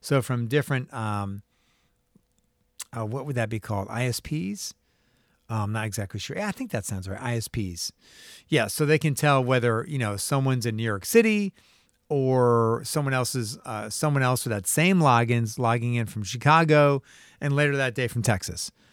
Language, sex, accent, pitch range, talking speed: English, male, American, 115-165 Hz, 185 wpm